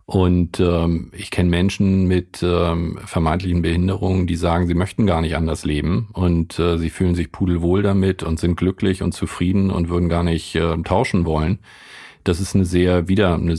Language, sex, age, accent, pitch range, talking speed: German, male, 40-59, German, 85-100 Hz, 185 wpm